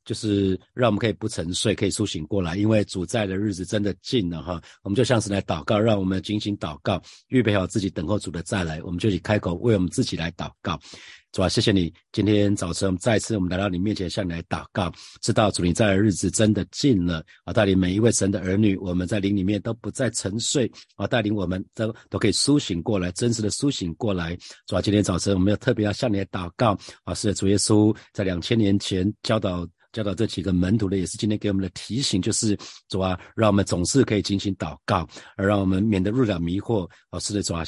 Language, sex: Chinese, male